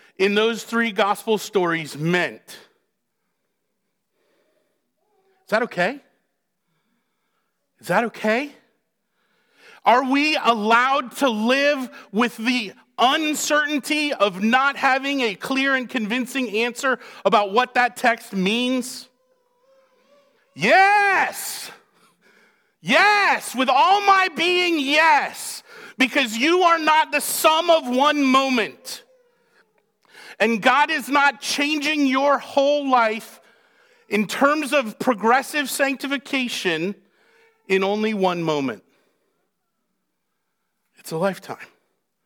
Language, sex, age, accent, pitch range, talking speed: English, male, 40-59, American, 195-285 Hz, 100 wpm